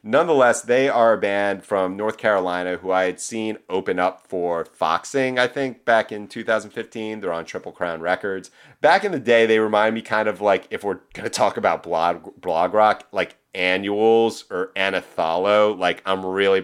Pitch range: 95-120 Hz